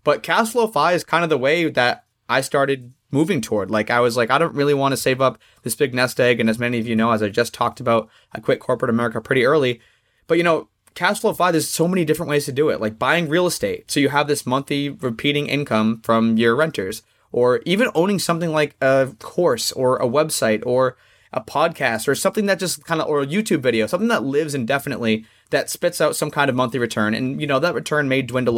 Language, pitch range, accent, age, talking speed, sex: English, 115-145 Hz, American, 20-39, 245 wpm, male